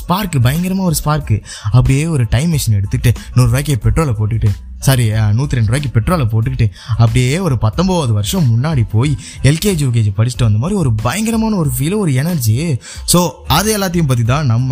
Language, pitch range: Tamil, 110-155 Hz